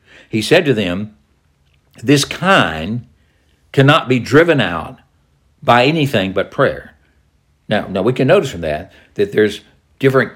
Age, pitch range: 60-79, 80-130 Hz